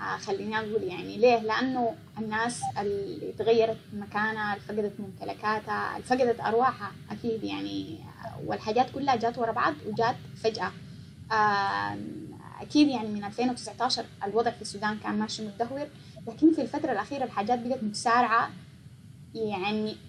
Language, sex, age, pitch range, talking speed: Arabic, female, 10-29, 190-245 Hz, 125 wpm